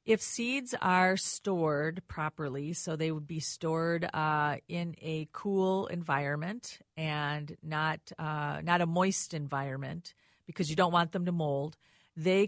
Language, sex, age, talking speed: English, female, 40-59, 145 wpm